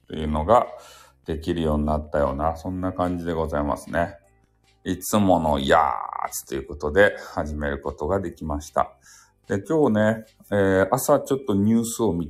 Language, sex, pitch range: Japanese, male, 85-115 Hz